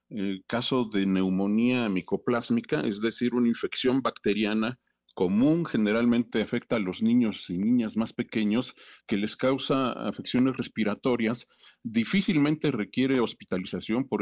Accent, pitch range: Mexican, 110-145 Hz